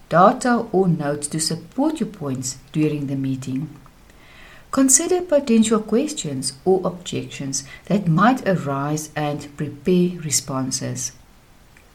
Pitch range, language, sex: 140-205 Hz, English, female